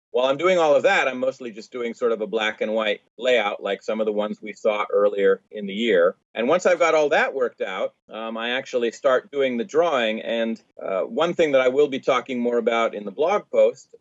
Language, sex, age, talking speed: English, male, 40-59, 250 wpm